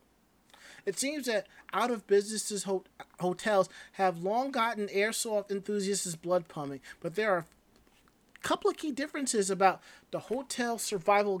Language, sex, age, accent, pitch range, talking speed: English, male, 30-49, American, 180-225 Hz, 125 wpm